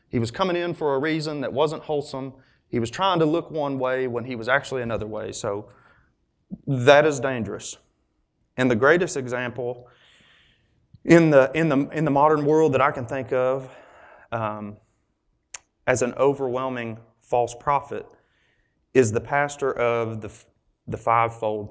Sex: male